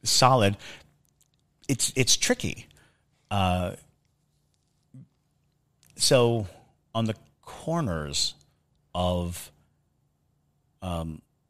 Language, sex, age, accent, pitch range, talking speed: English, male, 40-59, American, 85-120 Hz, 55 wpm